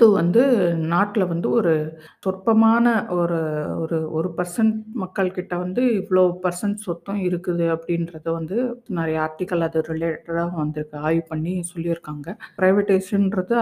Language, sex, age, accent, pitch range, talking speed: Tamil, female, 50-69, native, 170-210 Hz, 120 wpm